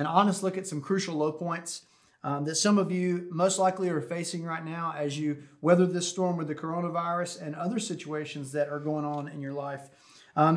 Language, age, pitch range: English, 30-49, 150-175 Hz